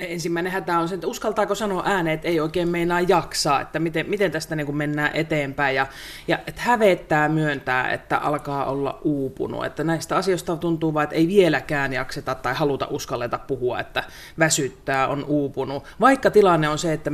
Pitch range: 140-170 Hz